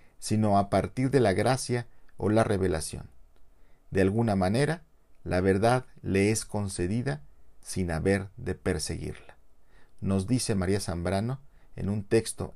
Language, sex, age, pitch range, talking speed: Spanish, male, 50-69, 90-115 Hz, 135 wpm